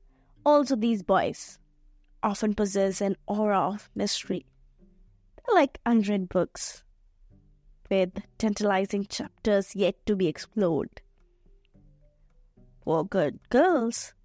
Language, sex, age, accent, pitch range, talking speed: English, female, 20-39, Indian, 195-240 Hz, 95 wpm